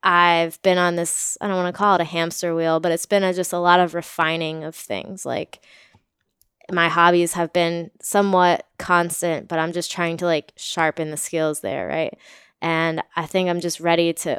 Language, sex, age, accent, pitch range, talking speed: English, female, 20-39, American, 160-175 Hz, 195 wpm